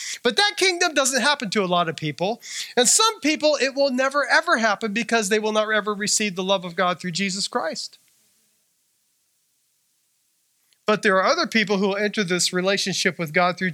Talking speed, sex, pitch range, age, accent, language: 190 wpm, male, 200-310 Hz, 40-59, American, English